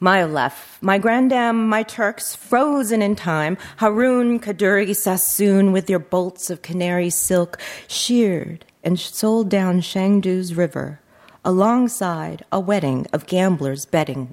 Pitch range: 175-225 Hz